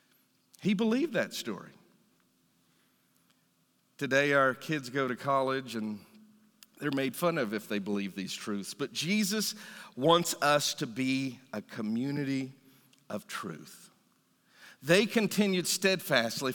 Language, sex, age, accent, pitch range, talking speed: English, male, 50-69, American, 130-170 Hz, 120 wpm